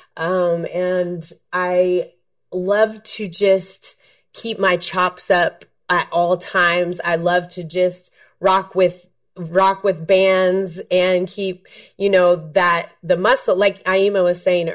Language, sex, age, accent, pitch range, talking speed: English, female, 30-49, American, 170-190 Hz, 135 wpm